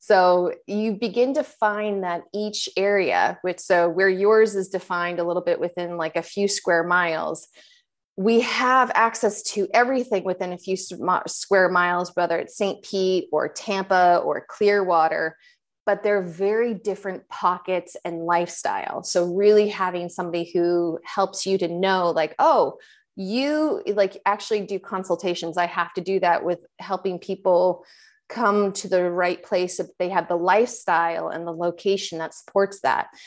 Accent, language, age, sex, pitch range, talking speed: American, English, 30-49, female, 175-210 Hz, 160 wpm